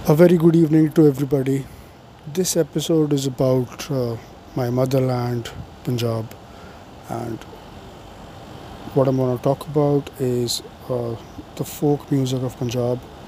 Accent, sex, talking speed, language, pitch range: Indian, male, 125 wpm, English, 115-145 Hz